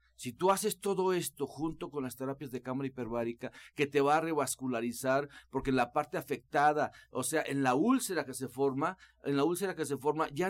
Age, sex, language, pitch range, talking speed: 50-69, male, Spanish, 125-165 Hz, 210 wpm